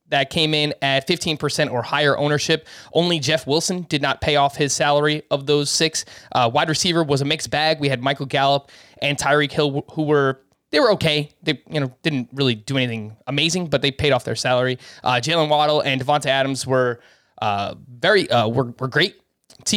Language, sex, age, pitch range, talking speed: English, male, 20-39, 135-165 Hz, 205 wpm